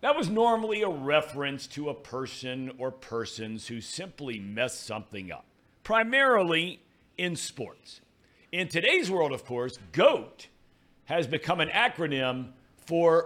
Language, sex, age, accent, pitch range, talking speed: English, male, 50-69, American, 125-170 Hz, 130 wpm